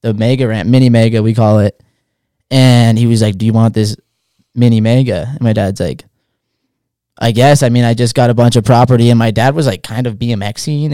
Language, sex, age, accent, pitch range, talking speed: English, male, 10-29, American, 115-135 Hz, 225 wpm